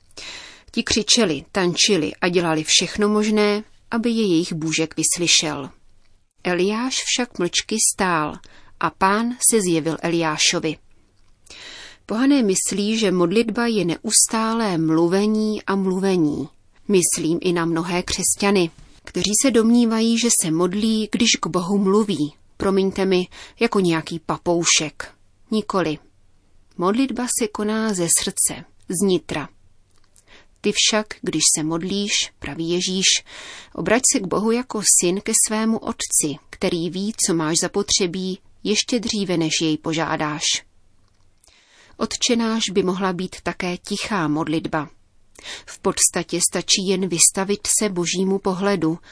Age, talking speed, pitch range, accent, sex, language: 30-49, 120 wpm, 160-210 Hz, native, female, Czech